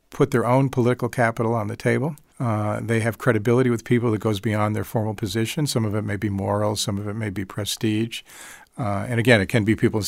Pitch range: 110-125 Hz